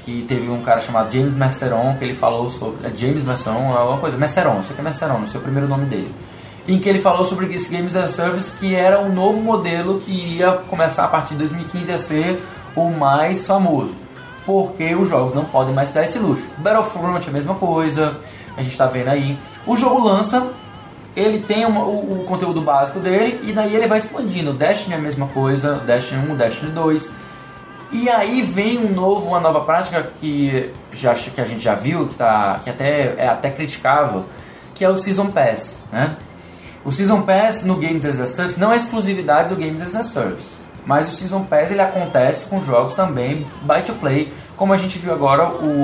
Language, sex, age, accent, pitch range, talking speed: Portuguese, male, 20-39, Brazilian, 135-185 Hz, 210 wpm